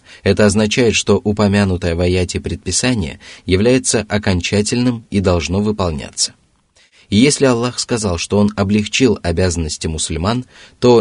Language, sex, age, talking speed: Russian, male, 20-39, 115 wpm